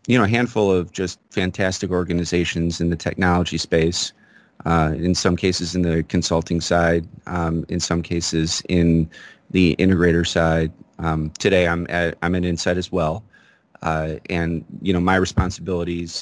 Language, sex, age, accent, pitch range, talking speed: English, male, 30-49, American, 80-90 Hz, 155 wpm